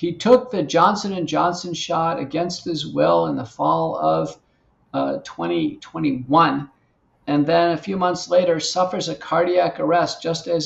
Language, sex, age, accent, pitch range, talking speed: English, male, 50-69, American, 140-180 Hz, 160 wpm